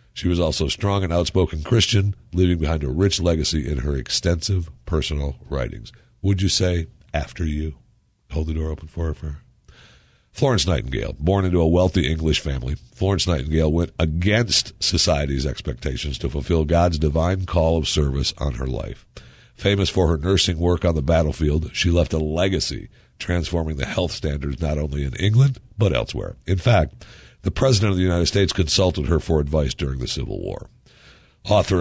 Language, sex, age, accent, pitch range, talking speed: English, male, 60-79, American, 75-95 Hz, 175 wpm